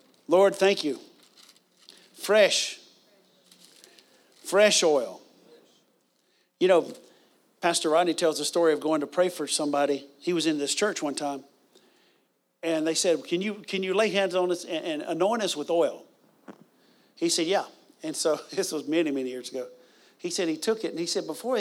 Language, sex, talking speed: English, male, 170 wpm